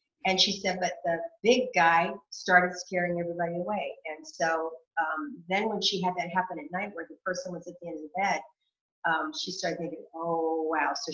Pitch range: 160-195 Hz